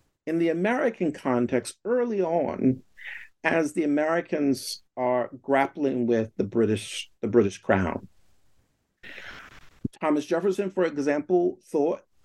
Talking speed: 110 wpm